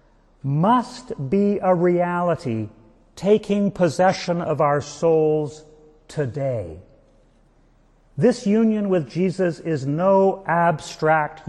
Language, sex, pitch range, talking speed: English, male, 140-185 Hz, 90 wpm